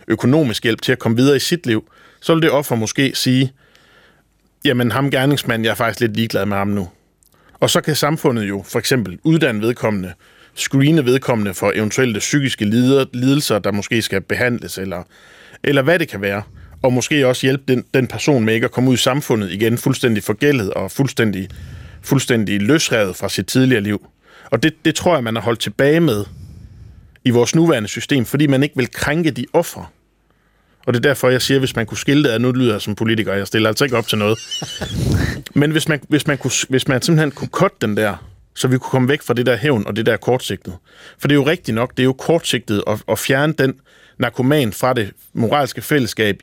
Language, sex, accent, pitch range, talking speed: Danish, male, native, 105-140 Hz, 215 wpm